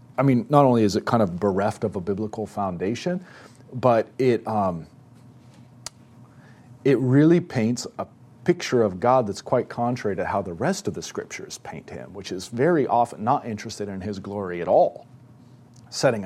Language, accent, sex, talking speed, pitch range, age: English, American, male, 175 wpm, 115-135 Hz, 40-59